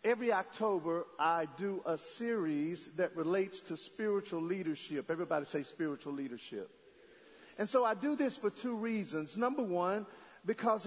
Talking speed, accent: 145 wpm, American